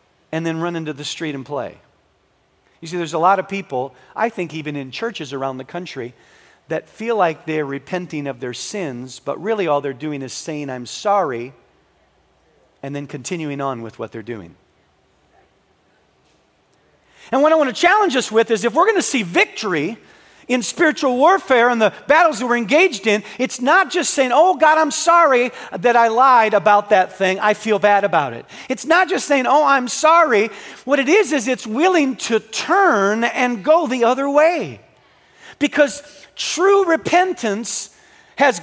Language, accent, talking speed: English, American, 180 wpm